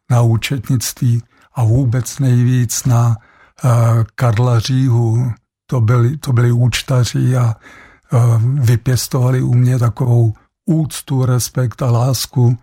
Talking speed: 110 wpm